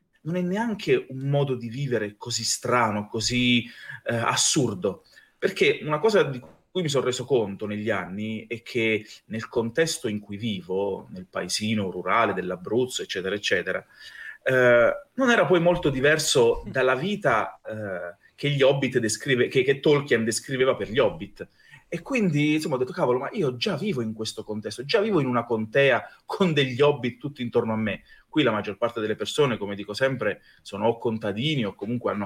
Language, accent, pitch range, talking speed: Italian, native, 110-155 Hz, 175 wpm